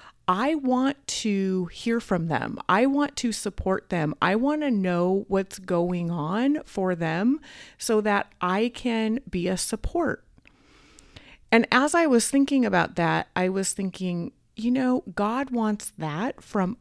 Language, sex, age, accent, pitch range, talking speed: English, female, 30-49, American, 175-230 Hz, 155 wpm